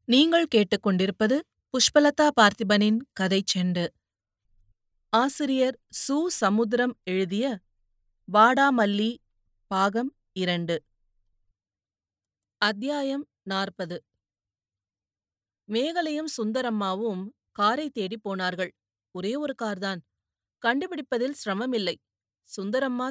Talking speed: 65 wpm